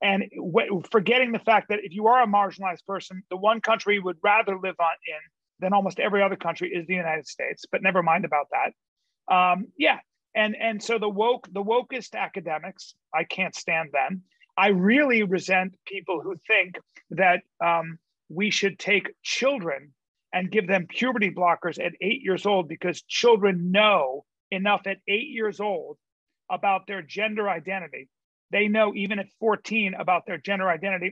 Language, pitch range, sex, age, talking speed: English, 180-215 Hz, male, 40-59, 175 wpm